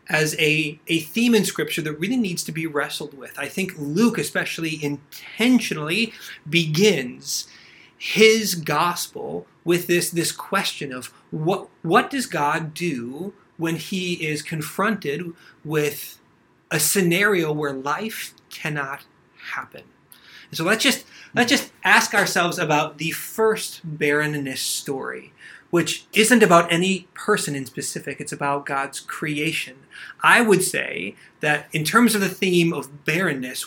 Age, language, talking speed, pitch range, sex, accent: 30-49, English, 135 wpm, 145-185 Hz, male, American